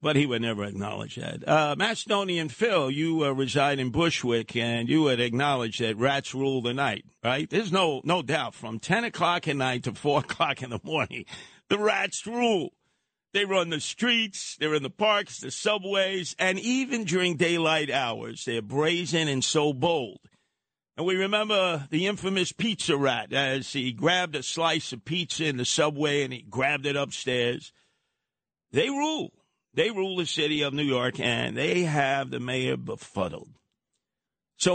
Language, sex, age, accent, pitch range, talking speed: English, male, 50-69, American, 120-175 Hz, 175 wpm